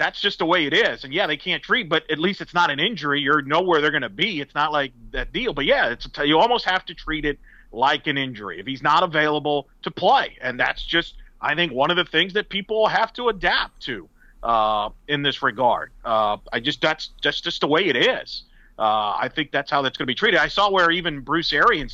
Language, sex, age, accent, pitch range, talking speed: English, male, 40-59, American, 145-185 Hz, 250 wpm